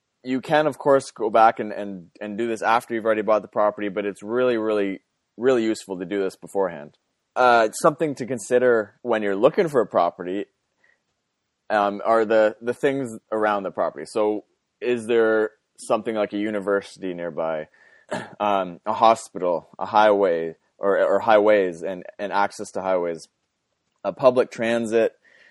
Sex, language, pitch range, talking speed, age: male, English, 100-120 Hz, 160 wpm, 20-39